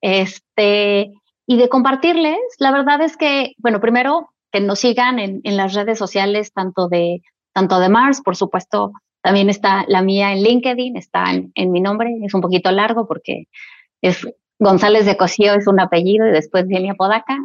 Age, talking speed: 30-49, 180 wpm